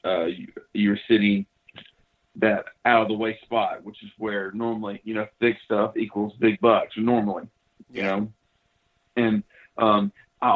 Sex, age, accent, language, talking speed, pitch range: male, 40-59, American, English, 150 wpm, 105-120 Hz